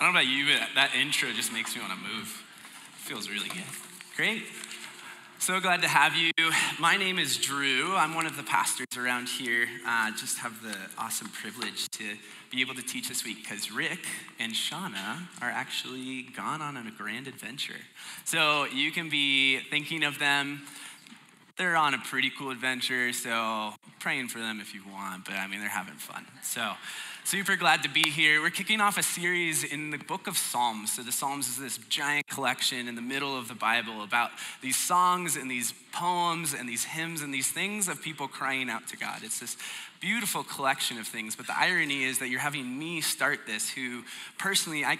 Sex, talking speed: male, 200 wpm